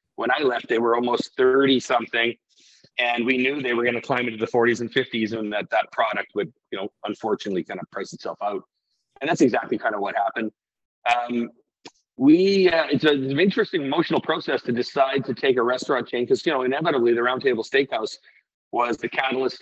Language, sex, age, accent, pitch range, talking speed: English, male, 40-59, American, 120-160 Hz, 210 wpm